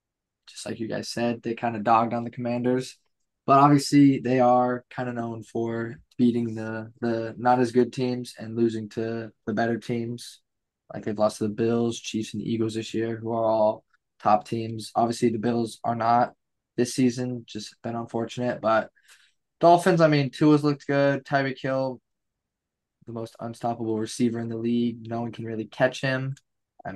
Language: English